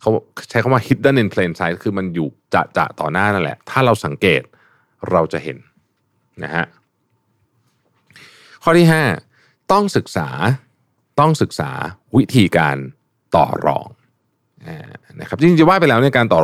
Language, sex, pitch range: Thai, male, 90-135 Hz